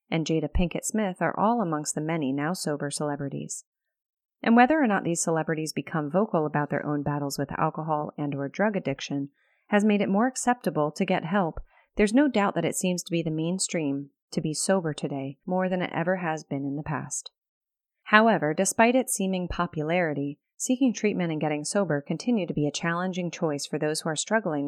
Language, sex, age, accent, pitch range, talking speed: English, female, 30-49, American, 145-195 Hz, 195 wpm